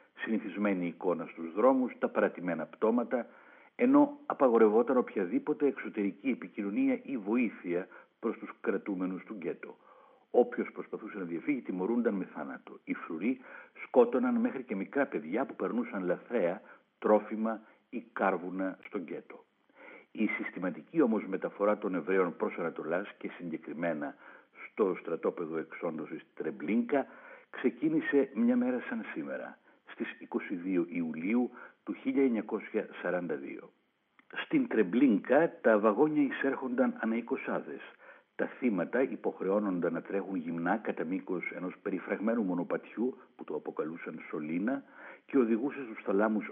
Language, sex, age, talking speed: Greek, male, 60-79, 120 wpm